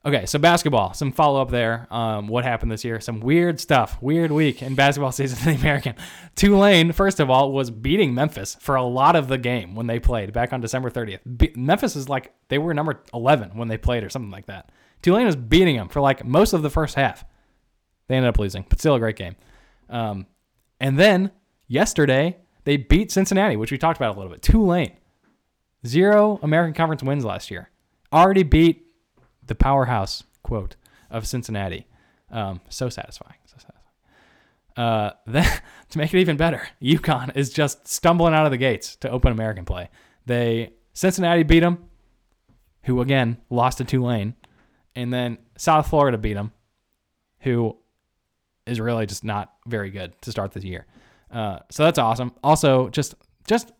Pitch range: 115-155 Hz